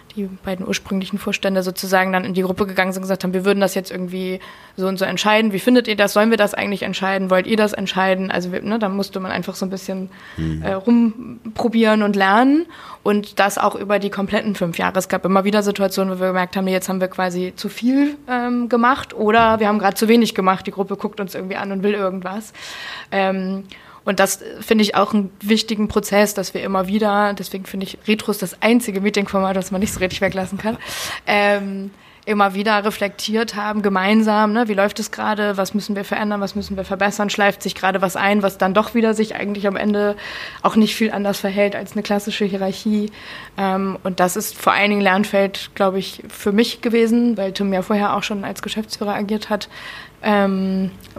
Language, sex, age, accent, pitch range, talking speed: English, female, 20-39, German, 190-215 Hz, 215 wpm